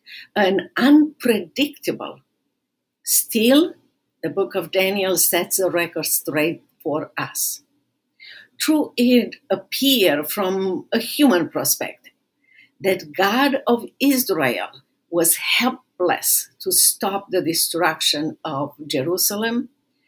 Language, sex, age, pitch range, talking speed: English, female, 50-69, 175-255 Hz, 95 wpm